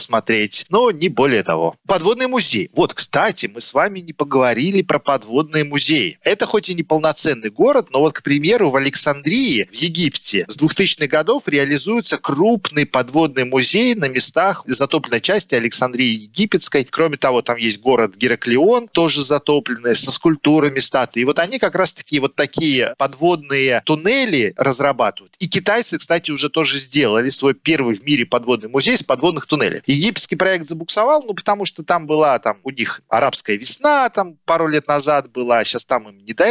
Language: Russian